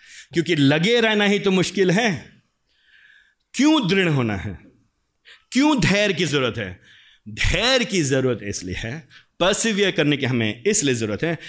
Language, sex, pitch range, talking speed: Hindi, male, 190-275 Hz, 145 wpm